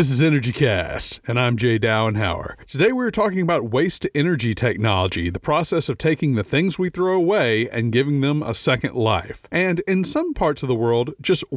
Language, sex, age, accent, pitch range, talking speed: English, male, 40-59, American, 115-160 Hz, 190 wpm